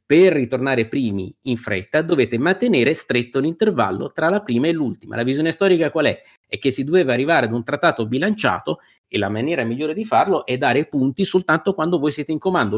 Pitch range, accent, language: 115-160 Hz, native, Italian